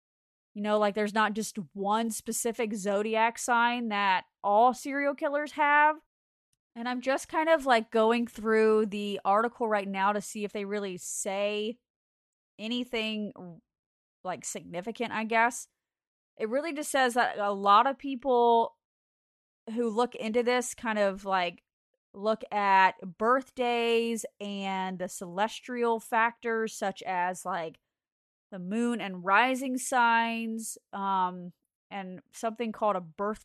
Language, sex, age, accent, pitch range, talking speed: English, female, 30-49, American, 200-245 Hz, 135 wpm